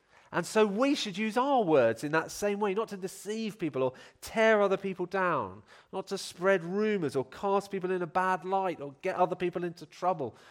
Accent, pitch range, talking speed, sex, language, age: British, 115-185 Hz, 210 wpm, male, English, 40-59